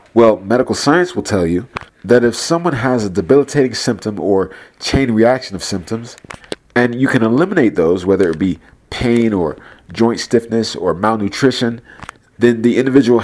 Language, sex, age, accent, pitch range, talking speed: English, male, 40-59, American, 100-130 Hz, 160 wpm